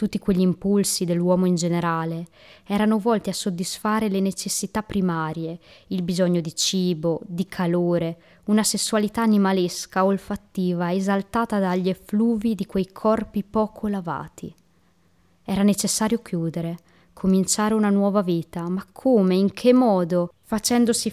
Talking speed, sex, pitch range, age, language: 125 wpm, female, 185-220 Hz, 20-39, Italian